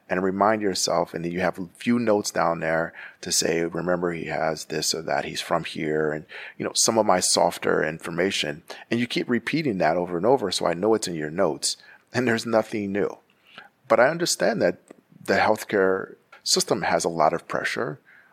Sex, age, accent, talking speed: male, 40-59, American, 205 wpm